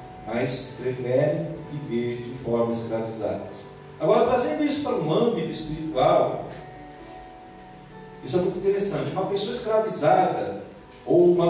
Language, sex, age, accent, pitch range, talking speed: Portuguese, male, 40-59, Brazilian, 160-225 Hz, 115 wpm